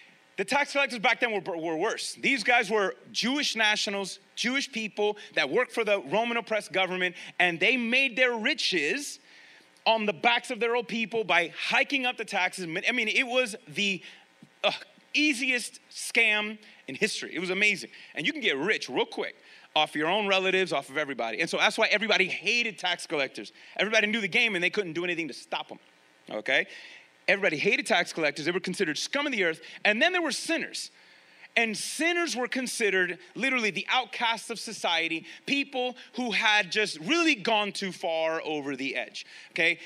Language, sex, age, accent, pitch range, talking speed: English, male, 30-49, American, 180-245 Hz, 185 wpm